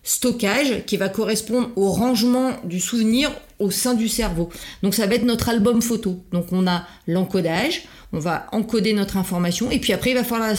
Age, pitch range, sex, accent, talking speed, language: 40-59, 190-230 Hz, female, French, 200 wpm, French